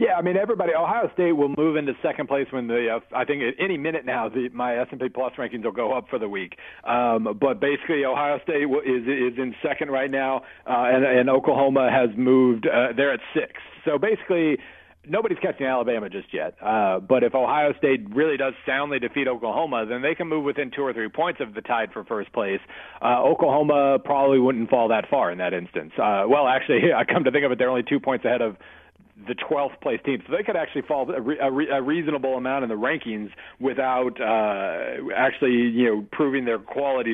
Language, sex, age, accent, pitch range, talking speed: English, male, 40-59, American, 120-140 Hz, 220 wpm